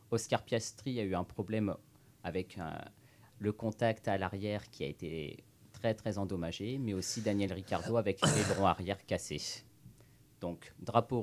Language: French